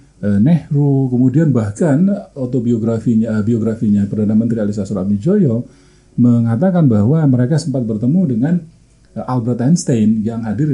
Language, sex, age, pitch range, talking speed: Indonesian, male, 40-59, 110-145 Hz, 110 wpm